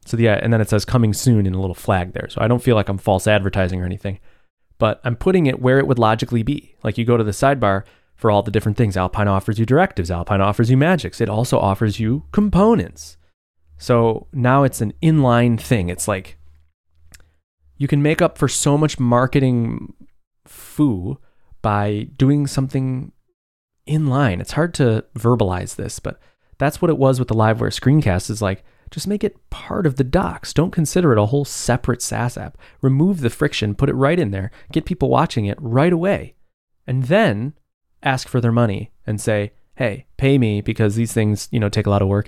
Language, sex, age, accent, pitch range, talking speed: English, male, 20-39, American, 100-135 Hz, 205 wpm